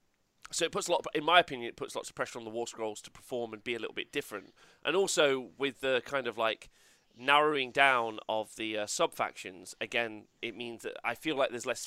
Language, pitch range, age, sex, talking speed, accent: English, 115-155 Hz, 30-49, male, 250 wpm, British